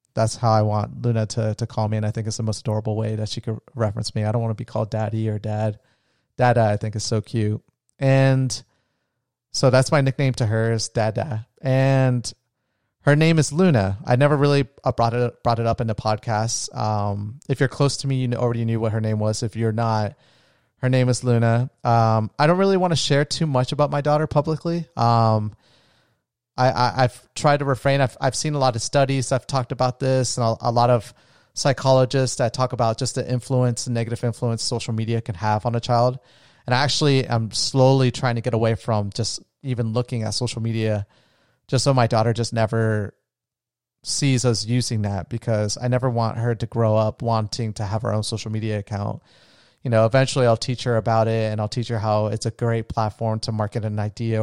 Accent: American